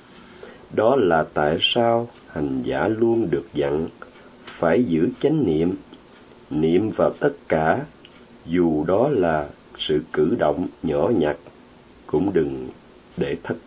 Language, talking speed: Vietnamese, 125 wpm